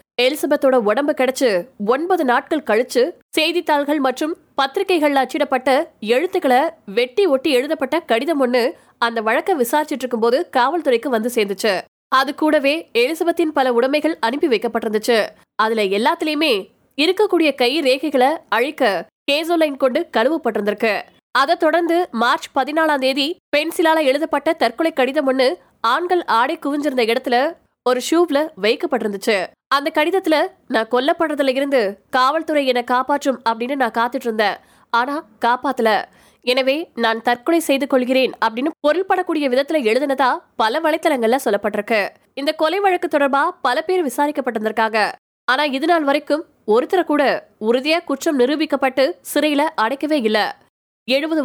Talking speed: 70 wpm